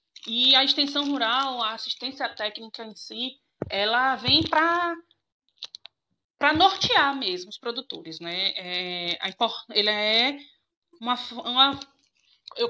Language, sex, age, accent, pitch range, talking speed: Portuguese, female, 20-39, Brazilian, 210-260 Hz, 115 wpm